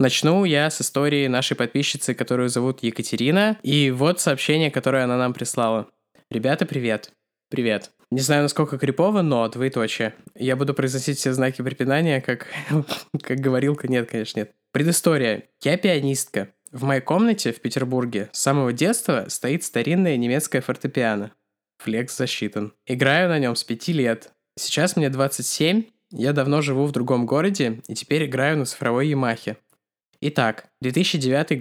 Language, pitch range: Russian, 120-150 Hz